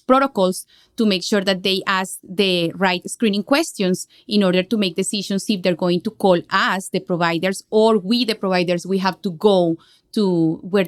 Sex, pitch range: female, 180-215 Hz